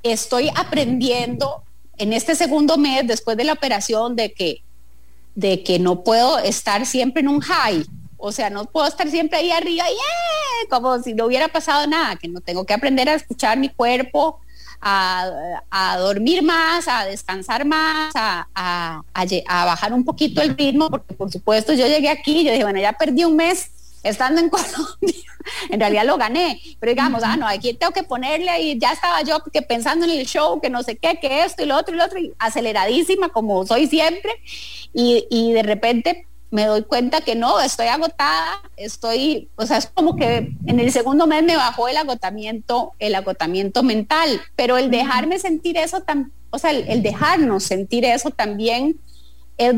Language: English